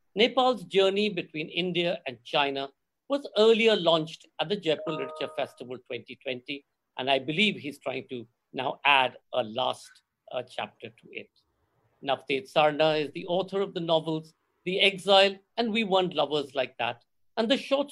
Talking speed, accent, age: 160 wpm, native, 50-69